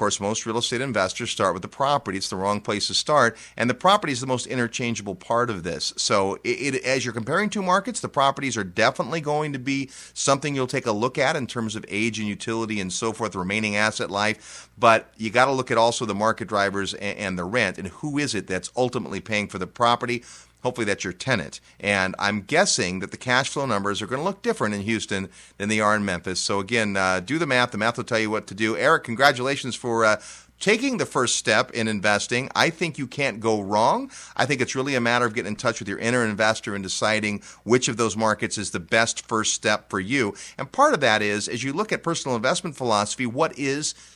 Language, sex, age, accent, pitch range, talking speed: English, male, 30-49, American, 105-135 Hz, 240 wpm